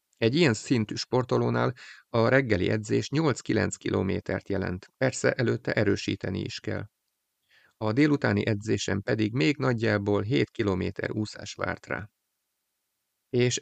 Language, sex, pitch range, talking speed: Hungarian, male, 100-125 Hz, 120 wpm